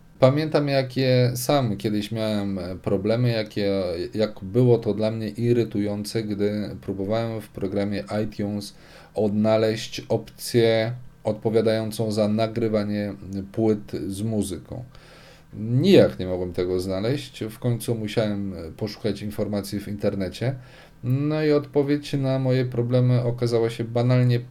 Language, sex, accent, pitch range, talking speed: Polish, male, native, 105-135 Hz, 115 wpm